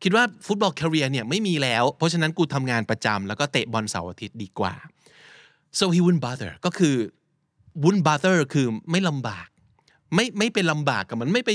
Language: Thai